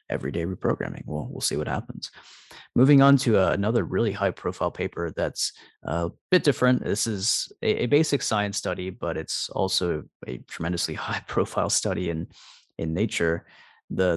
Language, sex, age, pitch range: English, male, 30-49, 95-135 Hz